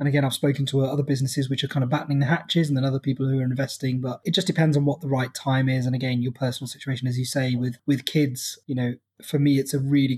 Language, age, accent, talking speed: English, 20-39, British, 290 wpm